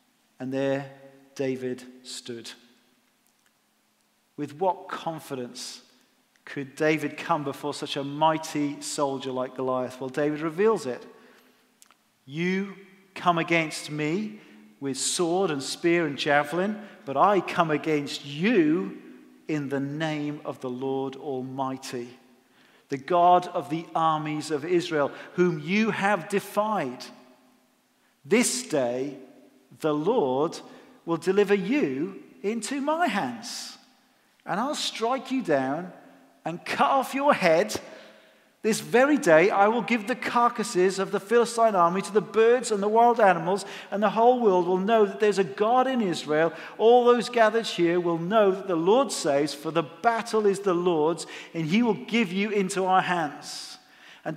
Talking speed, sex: 145 wpm, male